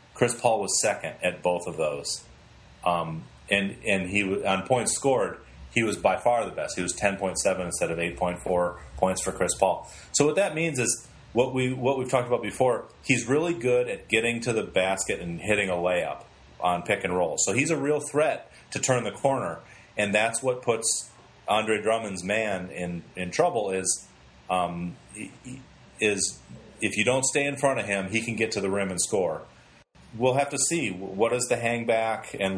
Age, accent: 30-49, American